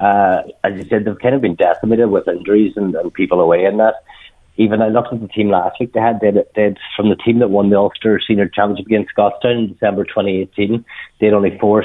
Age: 30-49